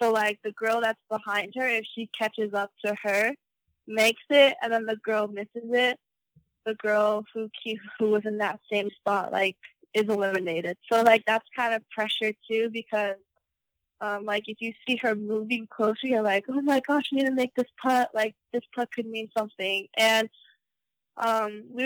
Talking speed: 190 wpm